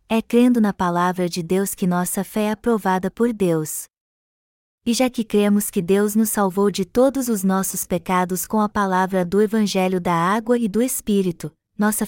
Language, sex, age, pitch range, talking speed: Portuguese, female, 20-39, 195-230 Hz, 185 wpm